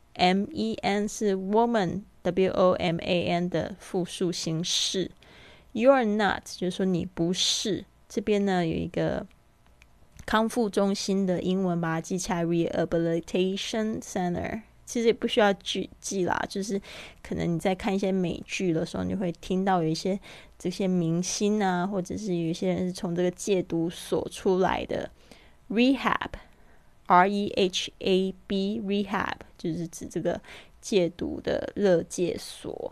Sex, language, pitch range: female, Chinese, 175-205 Hz